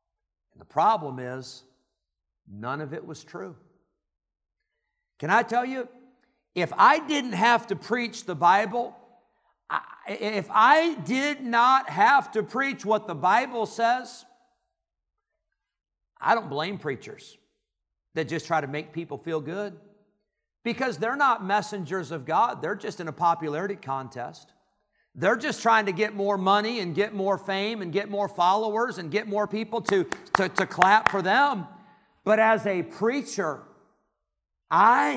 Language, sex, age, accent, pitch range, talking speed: English, male, 50-69, American, 180-240 Hz, 145 wpm